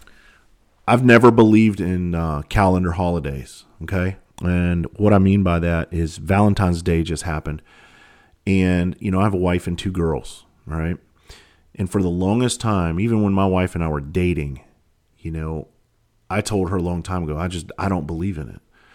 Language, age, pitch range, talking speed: English, 40-59, 85-105 Hz, 185 wpm